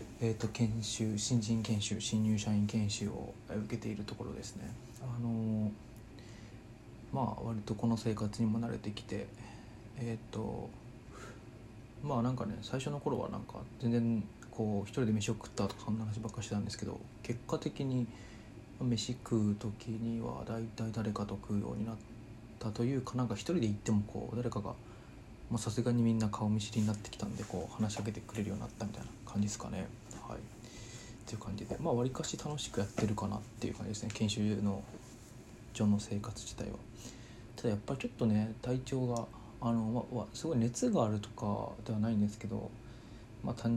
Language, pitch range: Japanese, 105-120 Hz